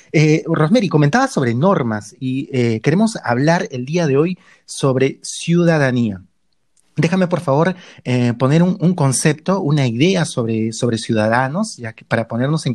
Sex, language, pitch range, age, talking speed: male, Spanish, 120-175 Hz, 30-49, 145 wpm